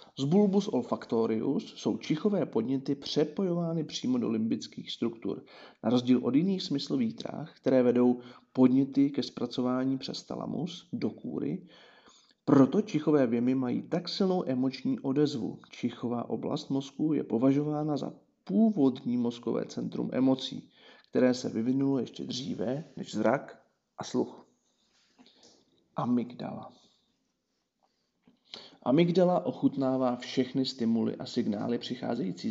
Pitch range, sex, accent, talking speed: 125-160 Hz, male, native, 115 wpm